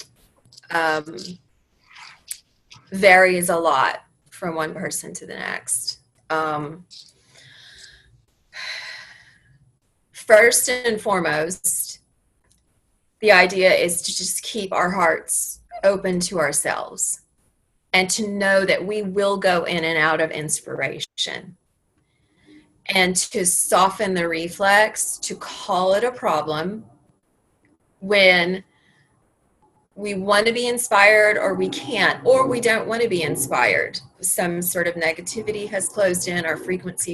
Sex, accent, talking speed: female, American, 115 wpm